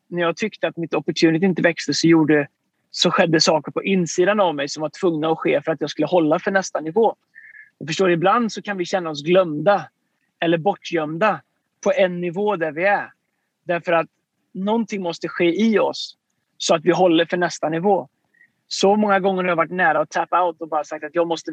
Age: 30-49